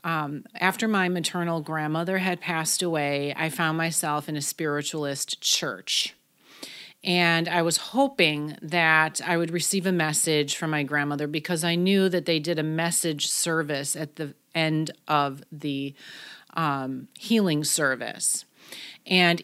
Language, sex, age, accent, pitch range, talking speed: English, female, 30-49, American, 155-180 Hz, 140 wpm